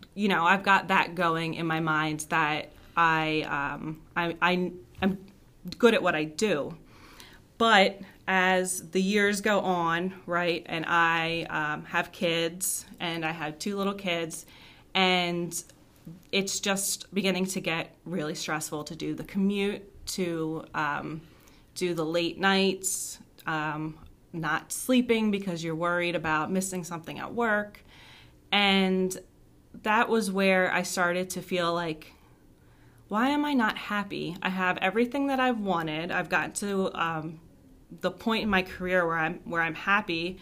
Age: 30-49